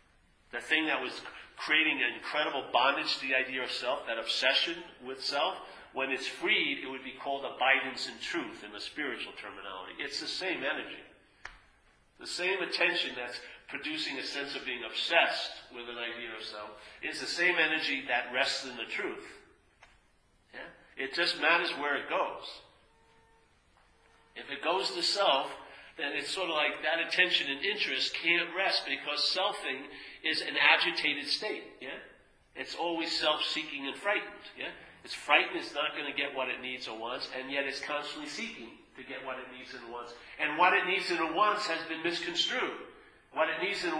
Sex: male